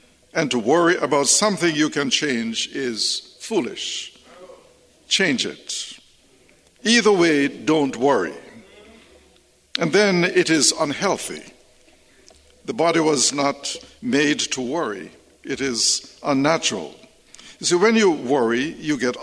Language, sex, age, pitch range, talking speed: English, male, 60-79, 140-205 Hz, 120 wpm